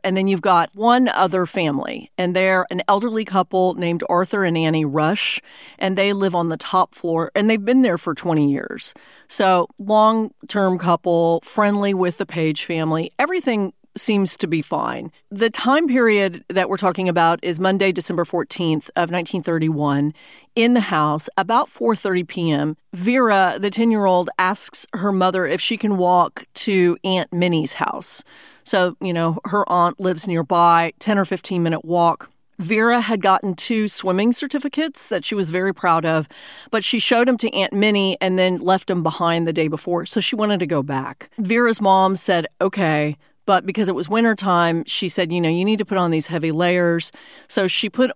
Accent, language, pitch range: American, English, 170-215 Hz